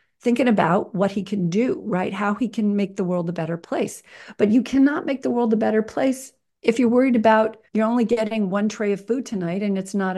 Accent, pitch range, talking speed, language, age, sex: American, 185-230 Hz, 235 wpm, English, 40-59, female